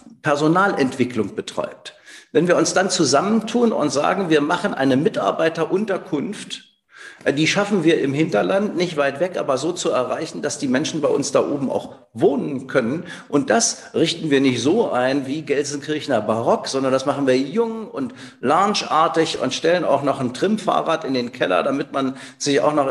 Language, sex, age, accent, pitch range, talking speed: German, male, 50-69, German, 135-180 Hz, 175 wpm